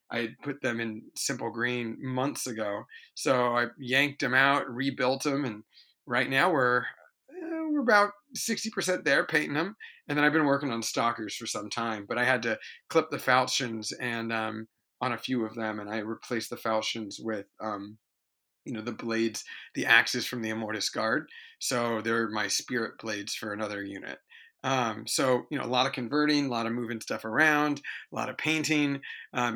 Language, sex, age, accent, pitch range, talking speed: English, male, 30-49, American, 115-145 Hz, 190 wpm